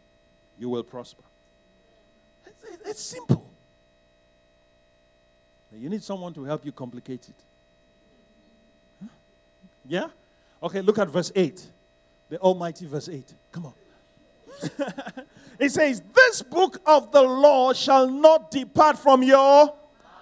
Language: English